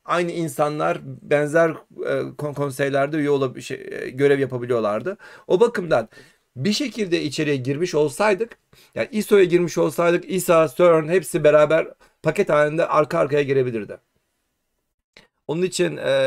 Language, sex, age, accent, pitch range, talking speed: Turkish, male, 40-59, native, 130-175 Hz, 125 wpm